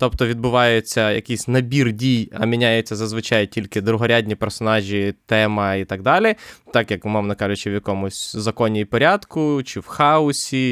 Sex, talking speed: male, 145 wpm